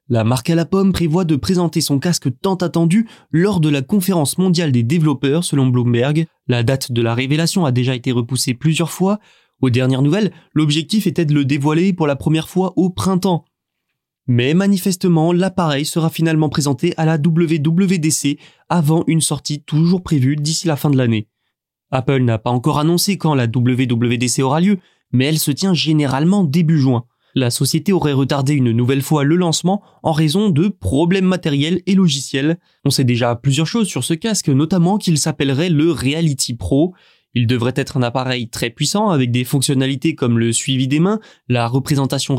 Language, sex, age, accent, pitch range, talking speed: French, male, 20-39, French, 135-175 Hz, 185 wpm